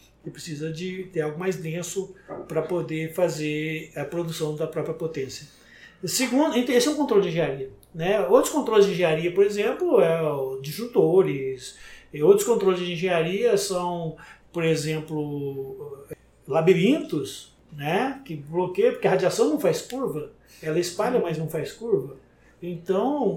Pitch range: 165-230 Hz